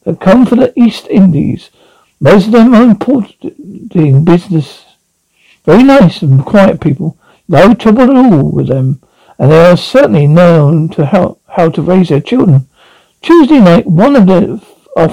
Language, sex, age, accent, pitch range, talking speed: English, male, 60-79, British, 155-200 Hz, 165 wpm